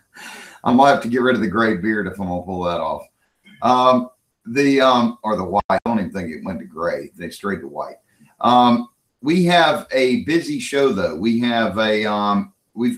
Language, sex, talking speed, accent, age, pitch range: English, male, 220 wpm, American, 40-59, 110-135 Hz